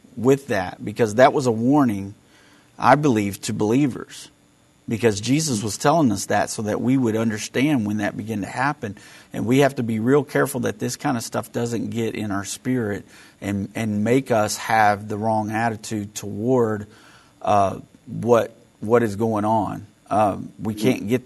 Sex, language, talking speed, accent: male, English, 180 wpm, American